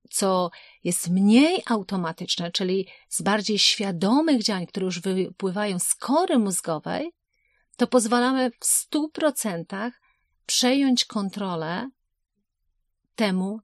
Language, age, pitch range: Polish, 40-59, 185-250 Hz